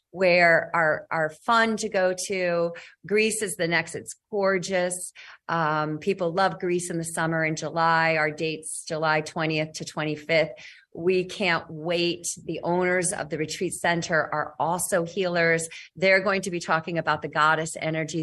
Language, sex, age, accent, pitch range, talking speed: English, female, 40-59, American, 165-225 Hz, 160 wpm